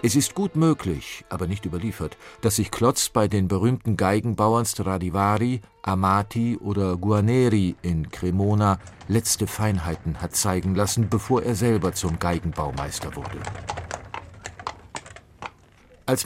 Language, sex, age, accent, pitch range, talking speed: German, male, 50-69, German, 90-110 Hz, 120 wpm